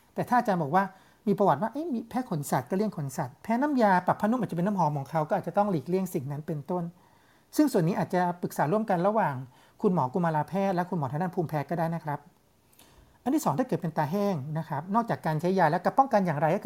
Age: 60-79